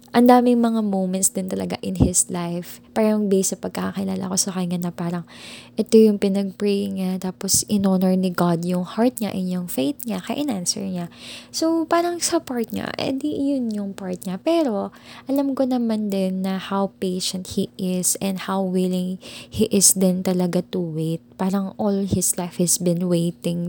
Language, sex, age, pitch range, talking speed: Filipino, female, 20-39, 180-215 Hz, 185 wpm